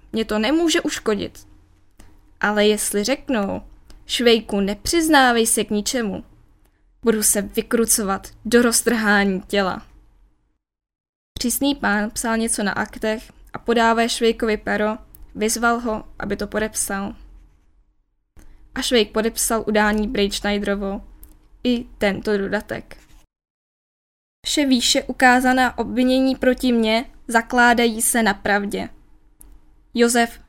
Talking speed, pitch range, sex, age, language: 100 wpm, 205-240 Hz, female, 10-29, Czech